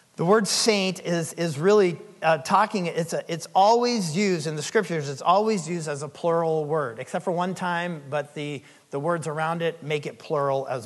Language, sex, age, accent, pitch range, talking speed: English, male, 40-59, American, 150-185 Hz, 205 wpm